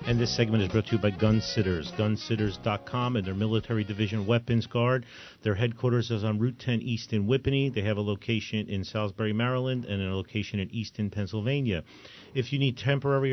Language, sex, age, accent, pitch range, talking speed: English, male, 40-59, American, 105-125 Hz, 195 wpm